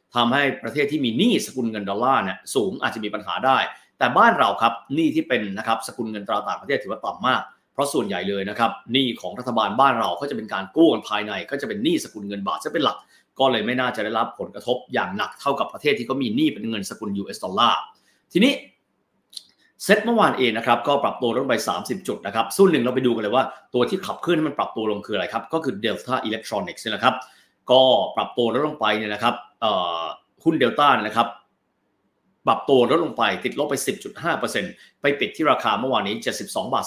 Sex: male